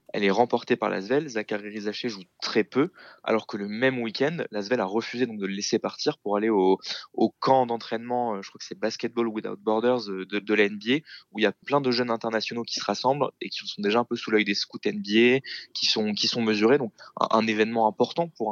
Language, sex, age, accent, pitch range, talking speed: French, male, 20-39, French, 110-130 Hz, 235 wpm